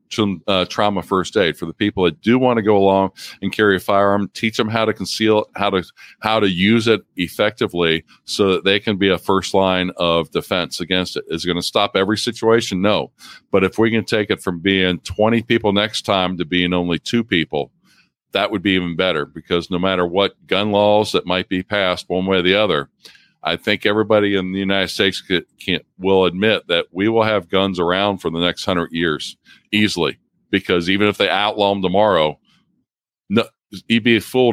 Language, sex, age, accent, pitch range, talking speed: English, male, 50-69, American, 90-105 Hz, 210 wpm